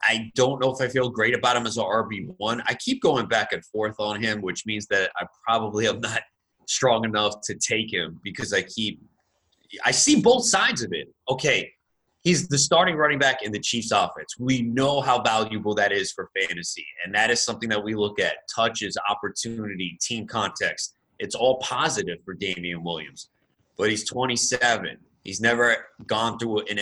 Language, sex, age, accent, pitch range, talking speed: English, male, 30-49, American, 105-125 Hz, 190 wpm